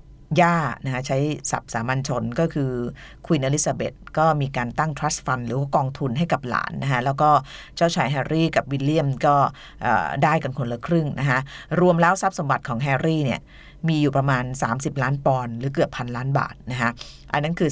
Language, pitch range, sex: Thai, 135-170 Hz, female